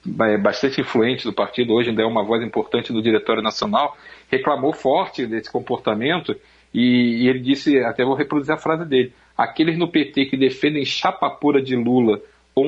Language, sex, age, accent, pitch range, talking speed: Portuguese, male, 40-59, Brazilian, 125-160 Hz, 175 wpm